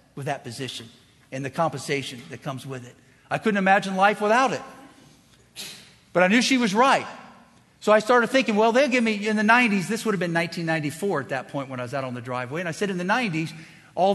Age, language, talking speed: 50-69, English, 235 wpm